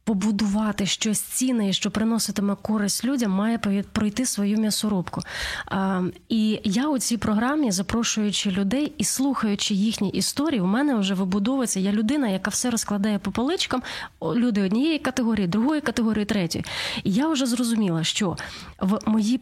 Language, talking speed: Ukrainian, 140 wpm